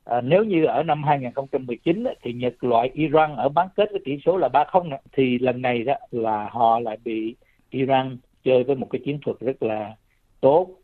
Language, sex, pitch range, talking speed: Vietnamese, male, 115-145 Hz, 205 wpm